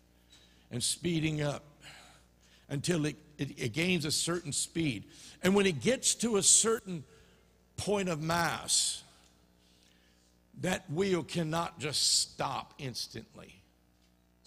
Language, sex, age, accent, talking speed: English, male, 60-79, American, 110 wpm